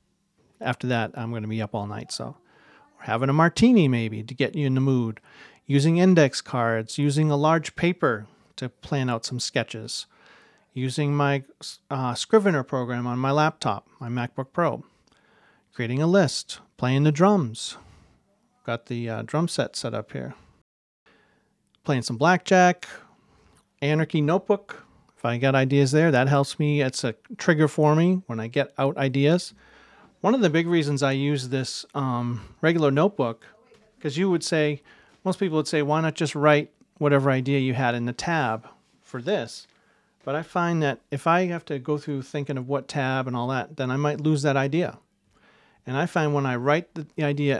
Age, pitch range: 40-59, 125-160 Hz